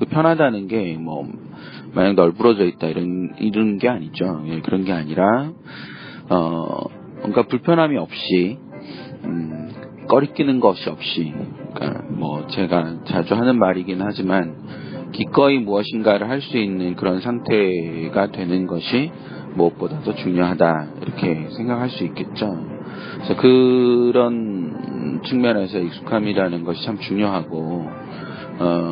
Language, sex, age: Korean, male, 40-59